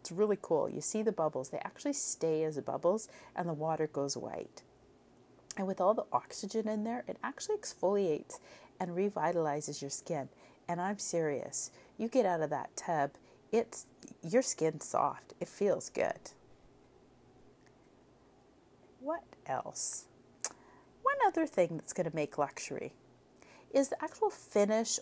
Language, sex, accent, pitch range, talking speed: English, female, American, 155-215 Hz, 145 wpm